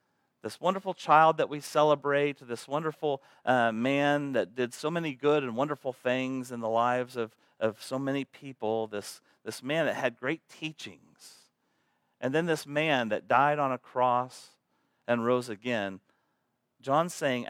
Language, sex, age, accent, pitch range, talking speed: English, male, 40-59, American, 120-150 Hz, 160 wpm